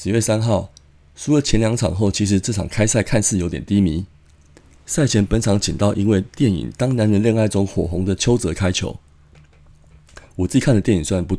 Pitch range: 75-110 Hz